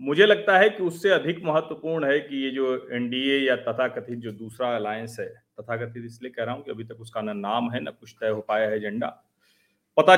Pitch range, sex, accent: 130-170 Hz, male, native